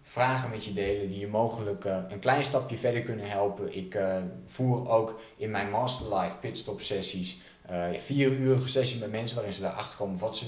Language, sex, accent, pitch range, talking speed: Dutch, male, Dutch, 100-130 Hz, 195 wpm